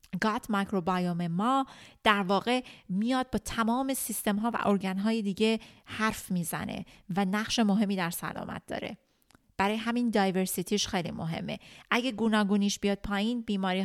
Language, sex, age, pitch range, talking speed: Persian, female, 30-49, 185-215 Hz, 140 wpm